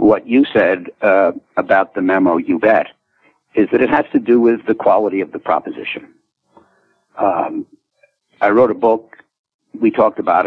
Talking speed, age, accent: 165 wpm, 60-79, American